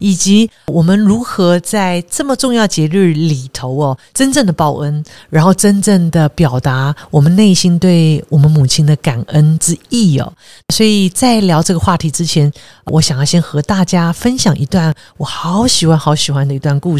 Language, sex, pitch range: Chinese, female, 145-190 Hz